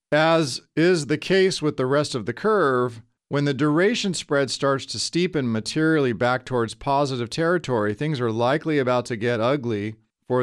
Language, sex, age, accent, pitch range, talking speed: English, male, 40-59, American, 120-150 Hz, 175 wpm